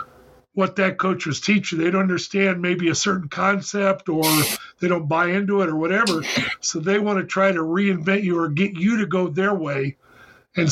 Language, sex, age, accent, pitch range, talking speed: English, male, 50-69, American, 170-200 Hz, 200 wpm